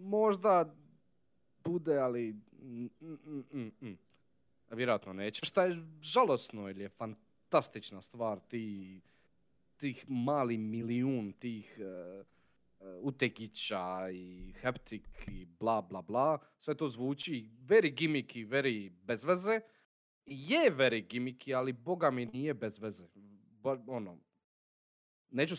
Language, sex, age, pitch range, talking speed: Croatian, male, 30-49, 110-160 Hz, 115 wpm